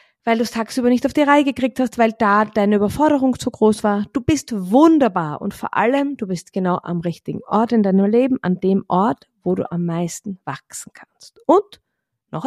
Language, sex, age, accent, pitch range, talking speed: German, female, 30-49, German, 185-260 Hz, 205 wpm